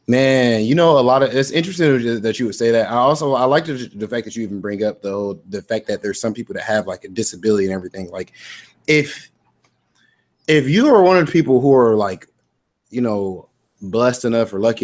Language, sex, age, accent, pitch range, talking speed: English, male, 20-39, American, 110-145 Hz, 230 wpm